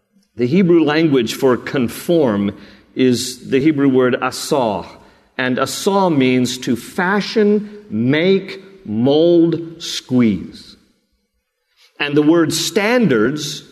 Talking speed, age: 95 wpm, 50-69